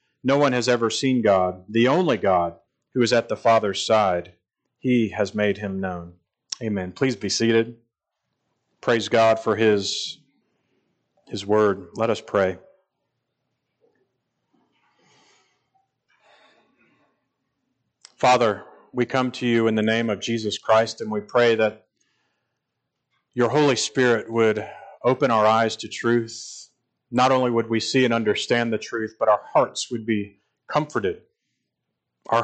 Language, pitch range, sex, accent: English, 105-125 Hz, male, American